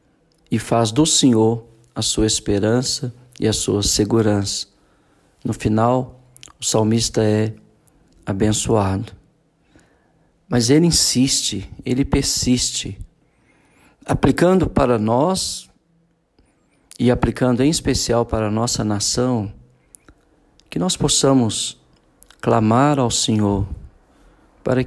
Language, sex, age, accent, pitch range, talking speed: Portuguese, male, 50-69, Brazilian, 110-130 Hz, 95 wpm